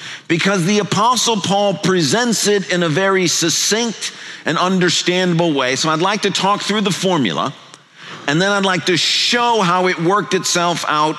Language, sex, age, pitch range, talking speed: English, male, 50-69, 155-200 Hz, 170 wpm